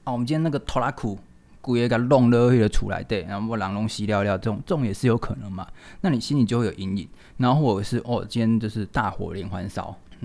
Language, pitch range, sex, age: Chinese, 100-125 Hz, male, 20-39